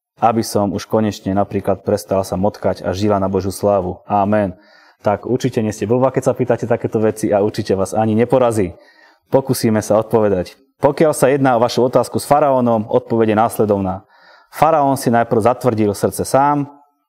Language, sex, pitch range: Slovak, male, 100-125 Hz